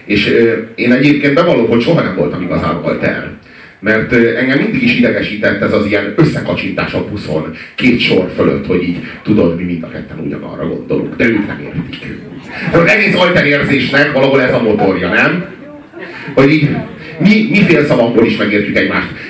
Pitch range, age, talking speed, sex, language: 105-145 Hz, 40-59, 180 wpm, male, Hungarian